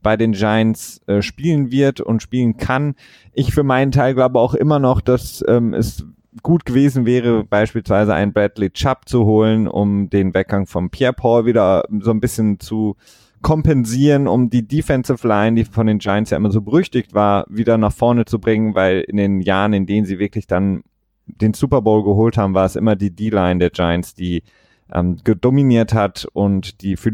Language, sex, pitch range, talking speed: German, male, 100-125 Hz, 190 wpm